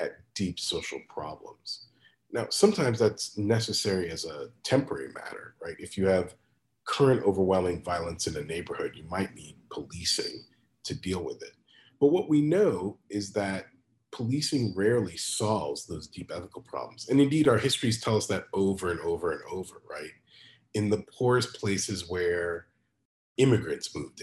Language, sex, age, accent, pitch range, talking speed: English, male, 30-49, American, 95-145 Hz, 155 wpm